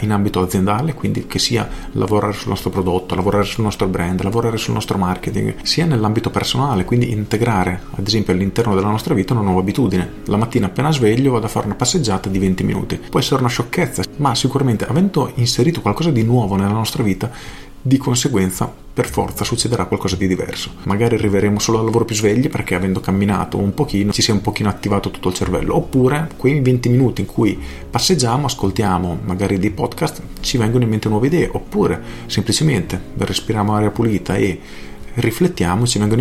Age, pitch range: 40-59, 95-120 Hz